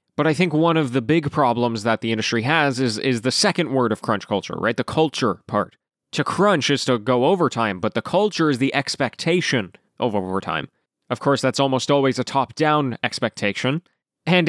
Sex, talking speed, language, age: male, 195 wpm, English, 20-39